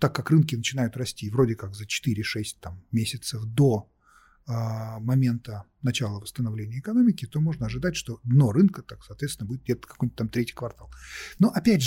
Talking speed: 160 wpm